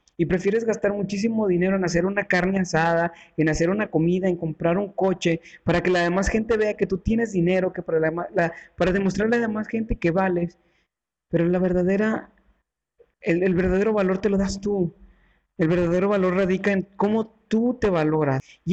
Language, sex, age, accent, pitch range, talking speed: Spanish, male, 40-59, Mexican, 165-200 Hz, 195 wpm